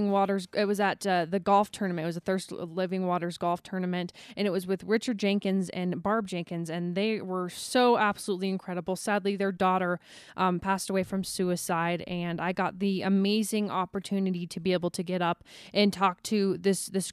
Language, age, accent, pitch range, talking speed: English, 20-39, American, 180-210 Hz, 195 wpm